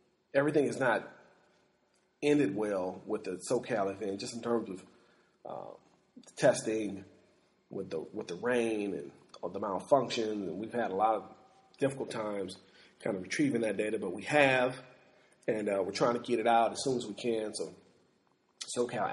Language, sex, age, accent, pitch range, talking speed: English, male, 40-59, American, 110-125 Hz, 170 wpm